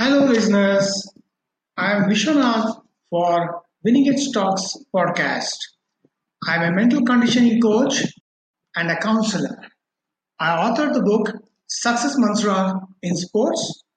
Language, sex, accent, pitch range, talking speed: English, male, Indian, 185-245 Hz, 115 wpm